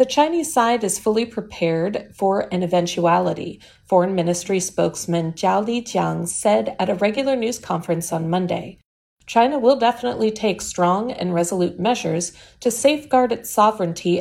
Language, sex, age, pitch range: Chinese, female, 40-59, 175-230 Hz